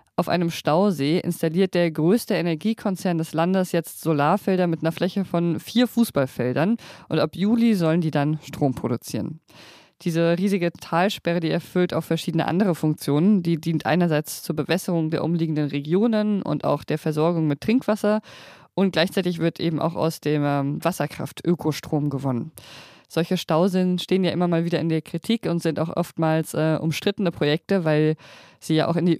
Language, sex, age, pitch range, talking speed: German, female, 20-39, 155-185 Hz, 165 wpm